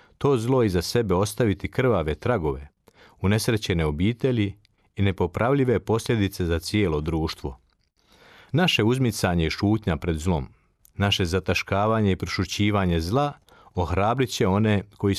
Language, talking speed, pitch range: Croatian, 120 wpm, 90-115 Hz